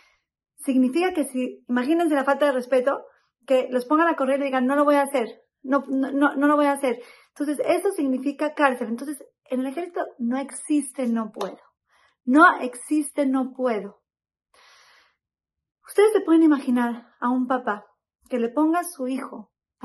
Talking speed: 175 wpm